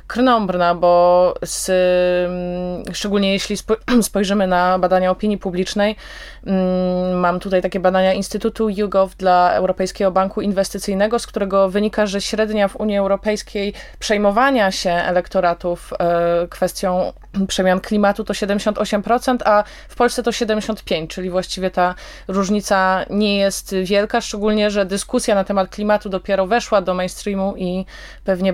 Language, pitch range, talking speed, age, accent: Polish, 185-215 Hz, 120 wpm, 20-39, native